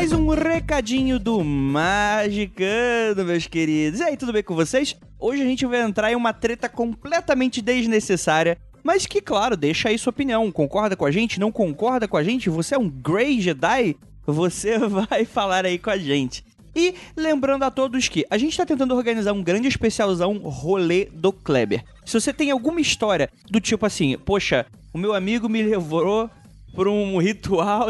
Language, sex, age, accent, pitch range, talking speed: Portuguese, male, 20-39, Brazilian, 180-240 Hz, 185 wpm